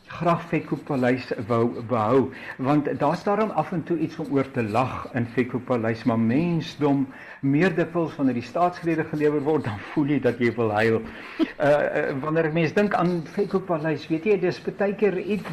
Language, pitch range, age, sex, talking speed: English, 140-200 Hz, 60-79, male, 180 wpm